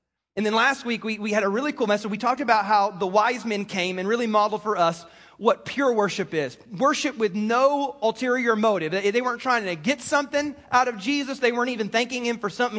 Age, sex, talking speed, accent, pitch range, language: 30-49, male, 230 wpm, American, 190-245 Hz, English